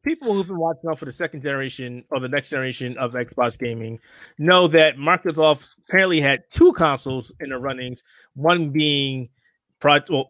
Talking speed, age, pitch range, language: 175 wpm, 30-49, 125-165 Hz, English